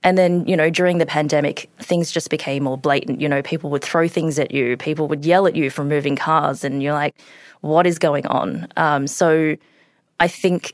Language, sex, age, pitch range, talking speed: English, female, 20-39, 145-170 Hz, 220 wpm